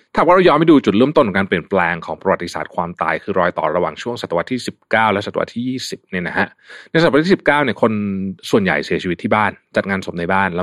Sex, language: male, Thai